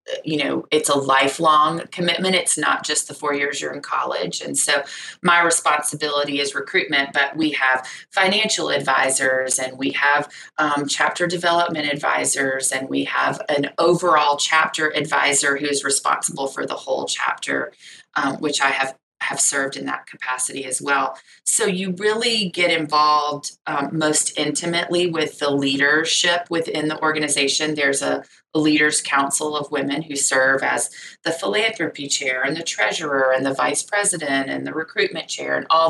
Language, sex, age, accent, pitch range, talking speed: English, female, 30-49, American, 140-160 Hz, 160 wpm